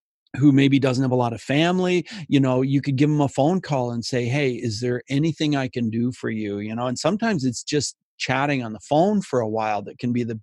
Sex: male